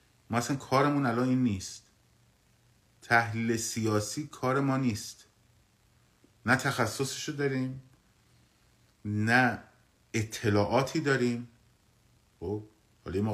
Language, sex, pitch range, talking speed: Persian, male, 95-125 Hz, 80 wpm